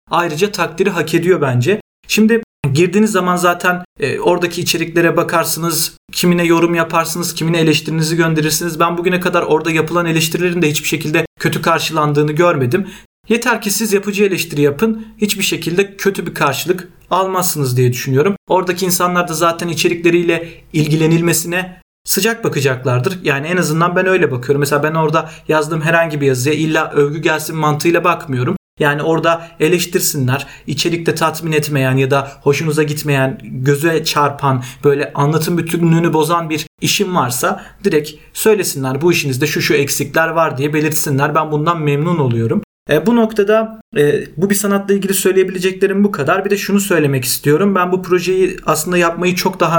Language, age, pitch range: Turkish, 40-59, 150-180 Hz